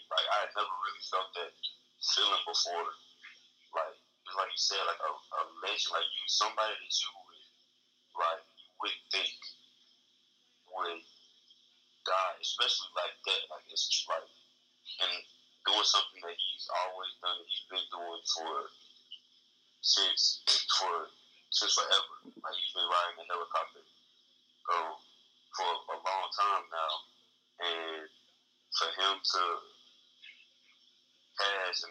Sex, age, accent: male, 30-49, American